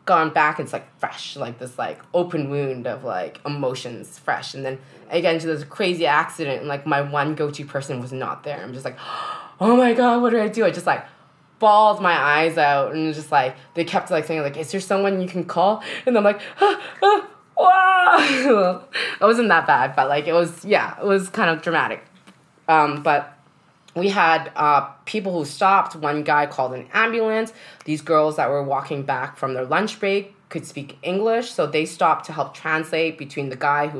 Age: 20-39